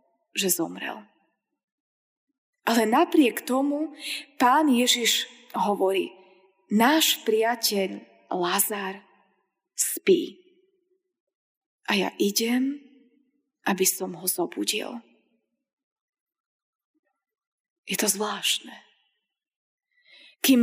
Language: Slovak